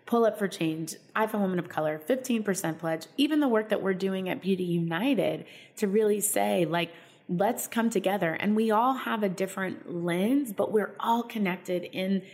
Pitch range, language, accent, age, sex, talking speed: 170-215 Hz, English, American, 20-39, female, 195 wpm